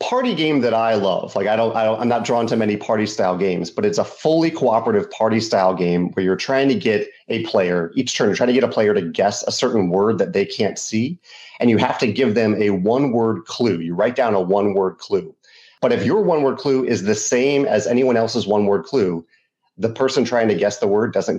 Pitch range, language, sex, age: 105-135 Hz, English, male, 30-49